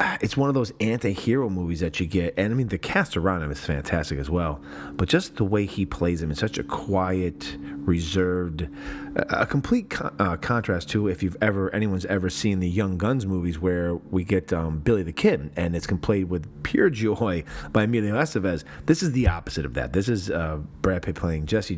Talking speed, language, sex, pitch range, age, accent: 210 wpm, English, male, 80-105 Hz, 30-49, American